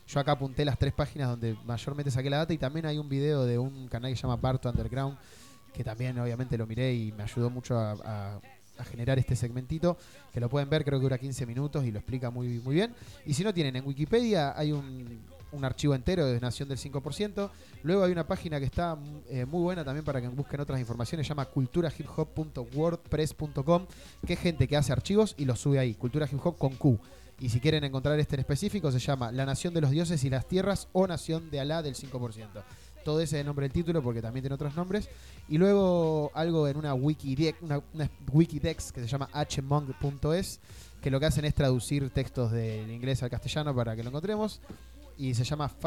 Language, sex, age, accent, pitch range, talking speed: Spanish, male, 20-39, Argentinian, 125-155 Hz, 215 wpm